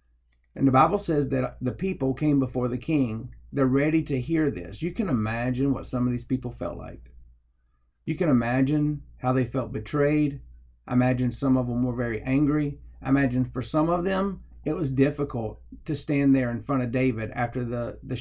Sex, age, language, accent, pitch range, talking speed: male, 40-59, English, American, 115-150 Hz, 200 wpm